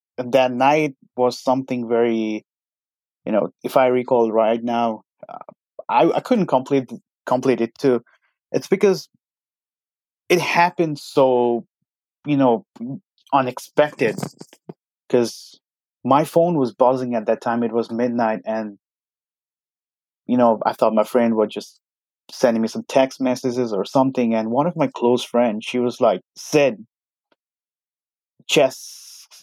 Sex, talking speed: male, 135 wpm